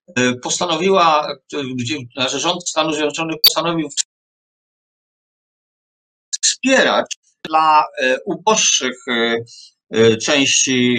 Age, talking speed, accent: 50-69, 55 wpm, native